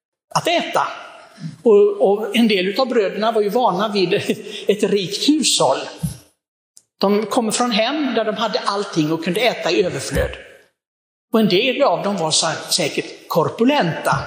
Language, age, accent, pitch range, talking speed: Swedish, 60-79, native, 175-235 Hz, 150 wpm